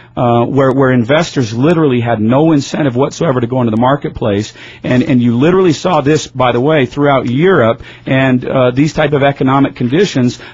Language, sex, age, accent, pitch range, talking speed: English, male, 40-59, American, 125-155 Hz, 180 wpm